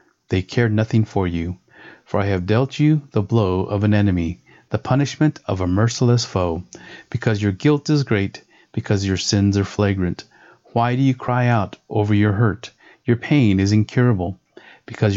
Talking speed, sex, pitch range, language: 175 wpm, male, 95-120 Hz, English